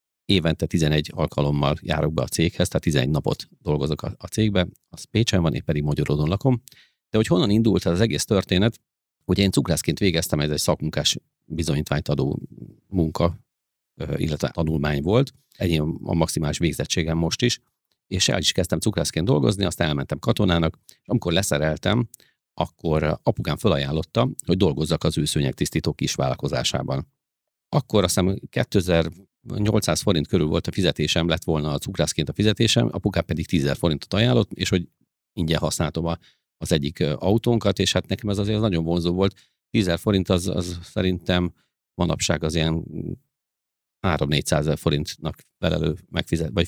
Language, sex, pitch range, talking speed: Hungarian, male, 80-100 Hz, 150 wpm